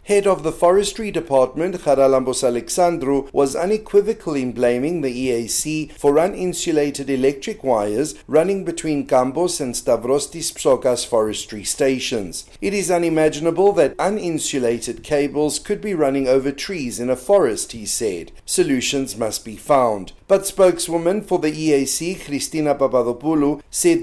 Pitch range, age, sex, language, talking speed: 130-180 Hz, 50-69, male, English, 130 wpm